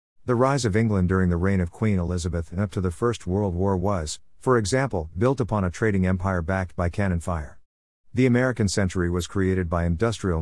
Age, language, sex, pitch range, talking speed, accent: 50-69, English, male, 90-110 Hz, 205 wpm, American